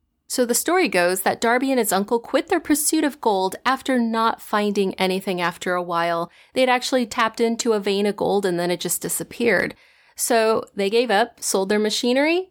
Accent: American